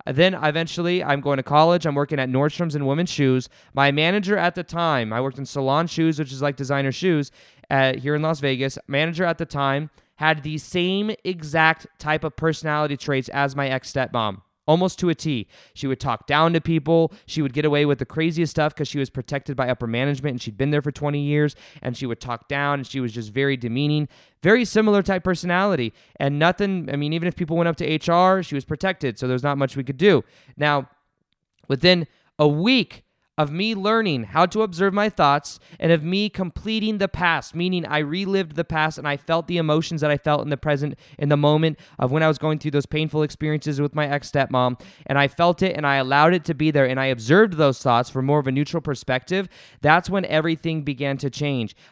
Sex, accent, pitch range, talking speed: male, American, 140-170 Hz, 225 wpm